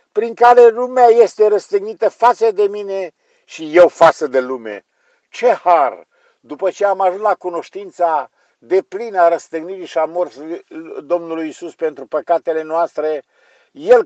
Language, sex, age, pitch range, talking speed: Romanian, male, 50-69, 165-265 Hz, 145 wpm